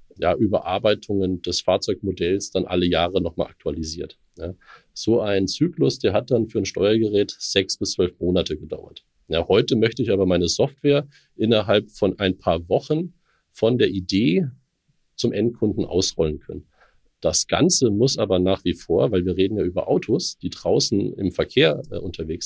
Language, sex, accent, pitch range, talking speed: German, male, German, 95-130 Hz, 165 wpm